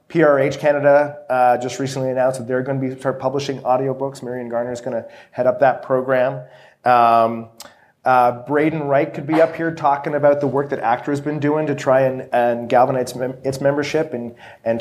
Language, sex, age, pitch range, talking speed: English, male, 30-49, 130-150 Hz, 205 wpm